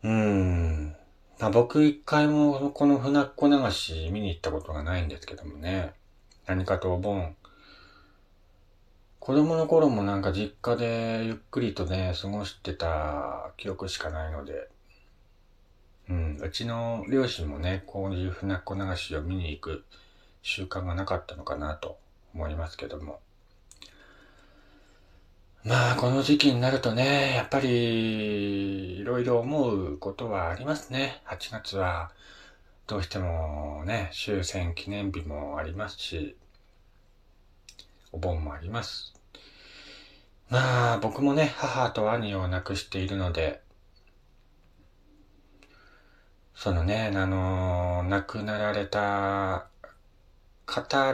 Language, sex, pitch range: Japanese, male, 90-110 Hz